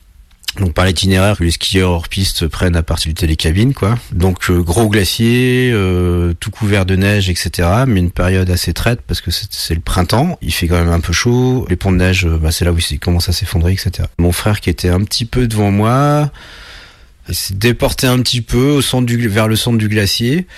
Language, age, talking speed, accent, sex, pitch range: French, 40-59, 220 wpm, French, male, 85-110 Hz